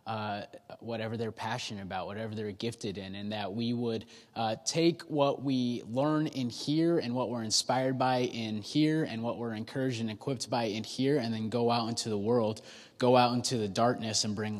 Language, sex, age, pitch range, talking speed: English, male, 20-39, 110-135 Hz, 205 wpm